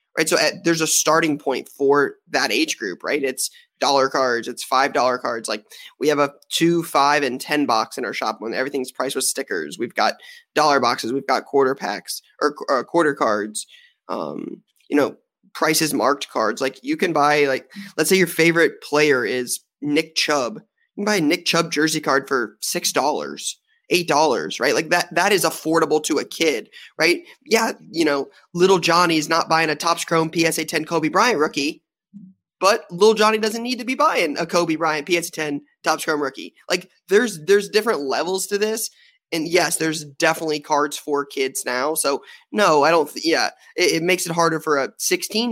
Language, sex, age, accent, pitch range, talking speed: English, male, 20-39, American, 145-205 Hz, 195 wpm